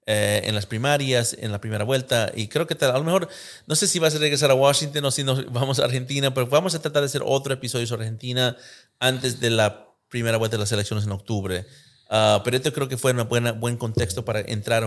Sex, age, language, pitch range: male, 30-49, English, 105-120 Hz